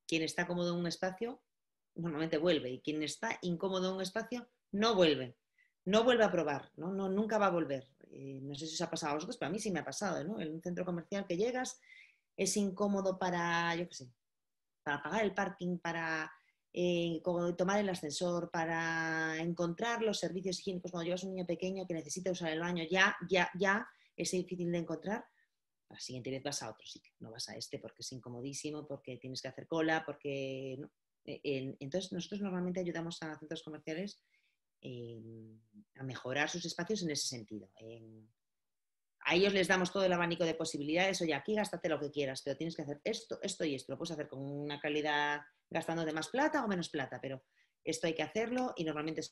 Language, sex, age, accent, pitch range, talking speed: Spanish, female, 30-49, Spanish, 140-185 Hz, 200 wpm